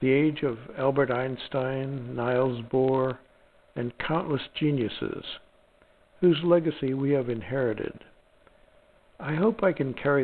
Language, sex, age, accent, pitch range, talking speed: English, male, 60-79, American, 130-165 Hz, 115 wpm